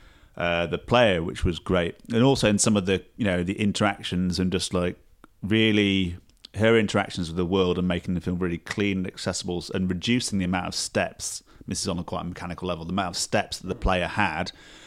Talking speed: 220 wpm